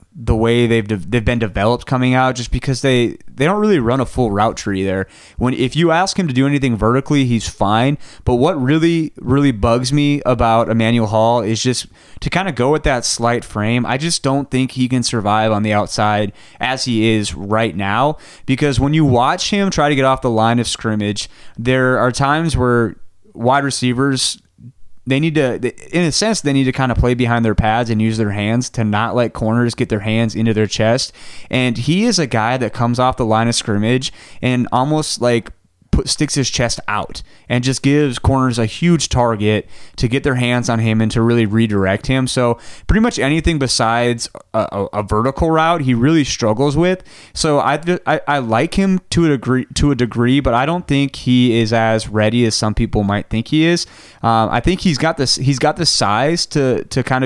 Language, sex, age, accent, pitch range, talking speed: English, male, 20-39, American, 110-140 Hz, 215 wpm